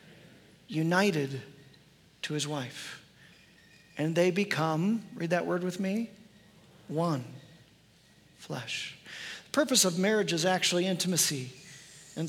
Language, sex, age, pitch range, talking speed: English, male, 40-59, 160-190 Hz, 105 wpm